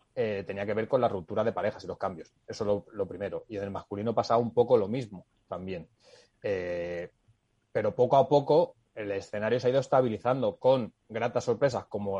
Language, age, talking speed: Spanish, 20-39, 205 wpm